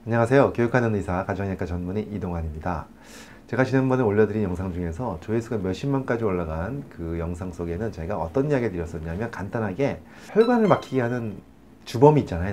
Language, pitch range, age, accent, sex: Korean, 90-130 Hz, 40-59, native, male